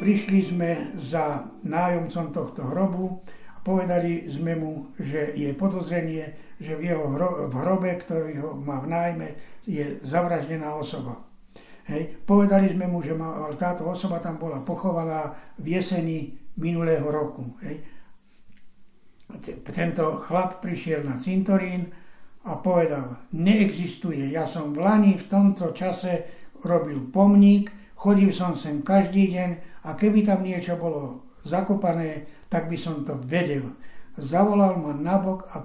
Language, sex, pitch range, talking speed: Slovak, male, 155-185 Hz, 135 wpm